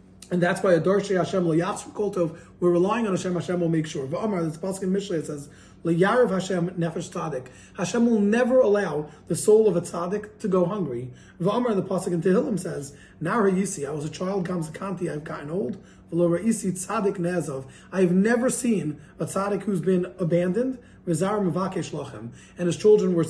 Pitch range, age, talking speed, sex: 165-200 Hz, 30-49, 155 wpm, male